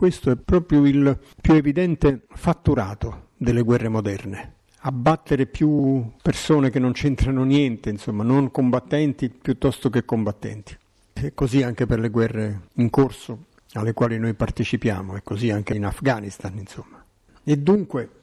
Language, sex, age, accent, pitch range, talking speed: Italian, male, 50-69, native, 110-140 Hz, 140 wpm